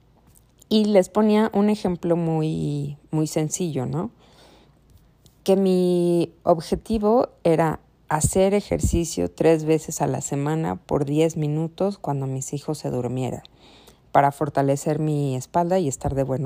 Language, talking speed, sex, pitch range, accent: Spanish, 130 wpm, female, 140-180 Hz, Mexican